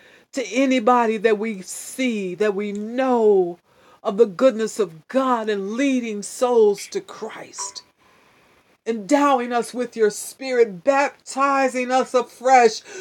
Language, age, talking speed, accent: English, 40-59, 120 wpm, American